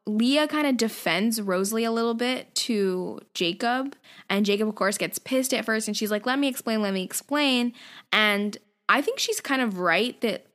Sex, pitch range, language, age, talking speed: female, 195-245 Hz, English, 10-29, 200 wpm